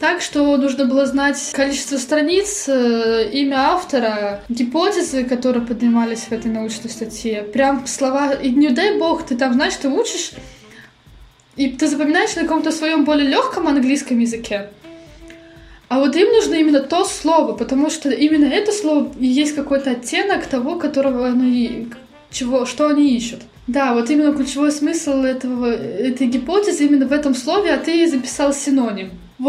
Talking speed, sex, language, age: 150 wpm, female, Russian, 20-39